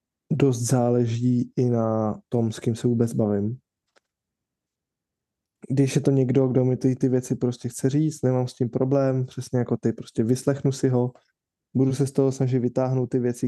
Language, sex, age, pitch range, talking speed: Czech, male, 20-39, 120-130 Hz, 185 wpm